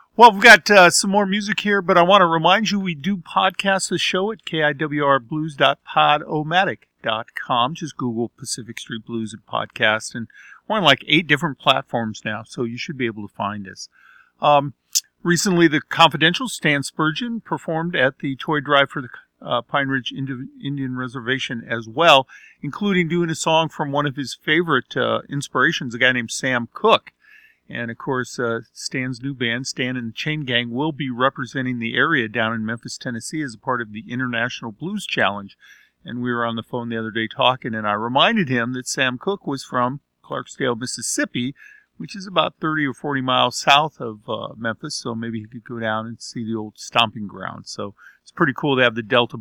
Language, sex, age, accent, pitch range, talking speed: English, male, 50-69, American, 115-160 Hz, 195 wpm